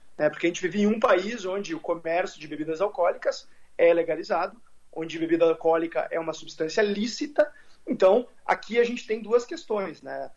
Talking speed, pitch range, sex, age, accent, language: 175 wpm, 175-250 Hz, male, 30-49, Brazilian, Portuguese